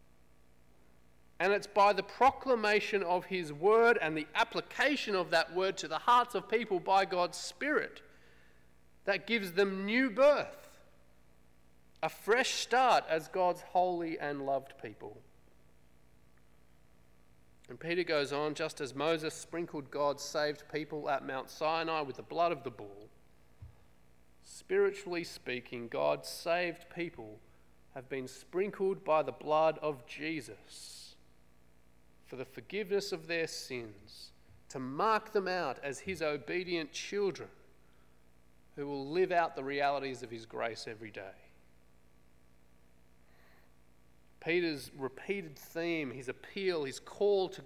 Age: 40-59